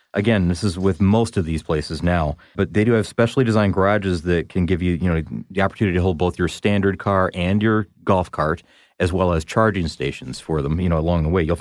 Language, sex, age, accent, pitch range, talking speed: English, male, 30-49, American, 85-105 Hz, 245 wpm